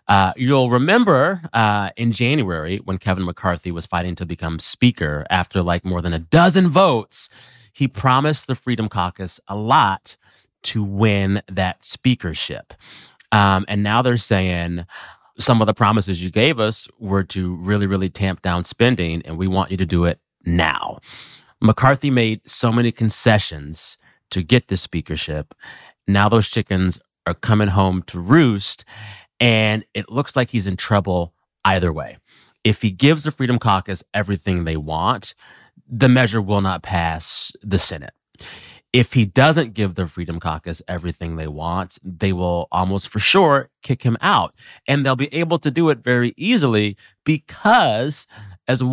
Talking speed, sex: 160 wpm, male